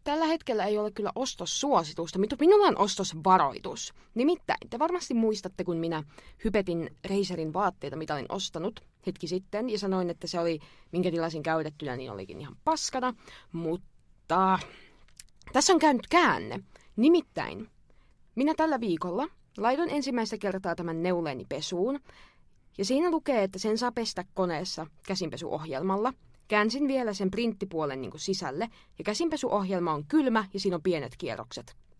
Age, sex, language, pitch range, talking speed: 20-39, female, Finnish, 170-245 Hz, 145 wpm